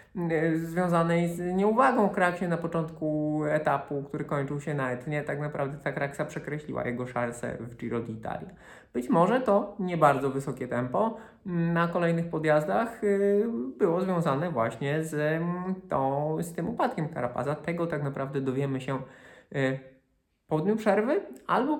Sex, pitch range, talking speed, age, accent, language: male, 130-175 Hz, 140 wpm, 20-39, native, Polish